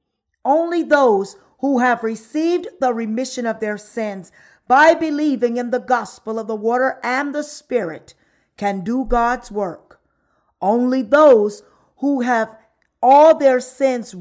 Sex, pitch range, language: female, 200-255 Hz, English